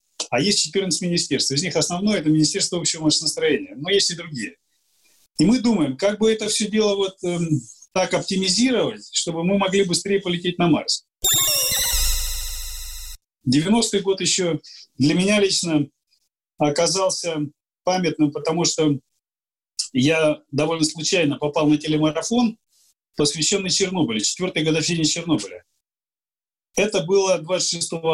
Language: Russian